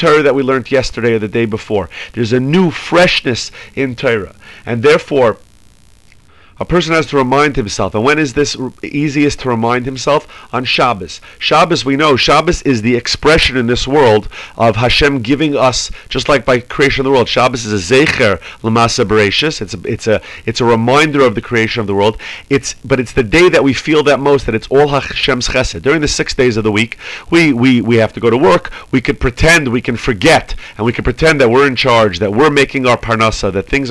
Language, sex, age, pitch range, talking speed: English, male, 40-59, 115-145 Hz, 220 wpm